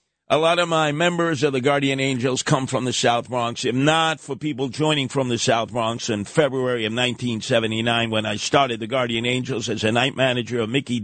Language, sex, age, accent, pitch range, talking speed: English, male, 50-69, American, 125-175 Hz, 210 wpm